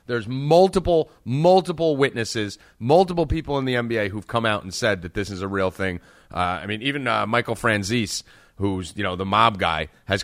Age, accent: 30-49, American